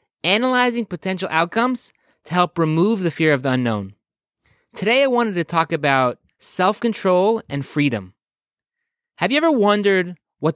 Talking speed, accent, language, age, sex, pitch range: 140 wpm, American, English, 30-49, male, 150-225 Hz